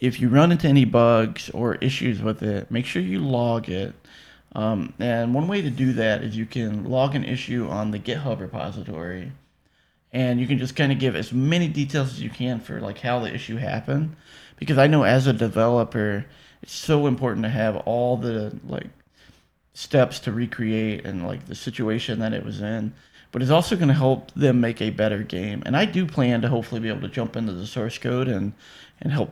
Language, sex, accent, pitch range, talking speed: English, male, American, 110-130 Hz, 210 wpm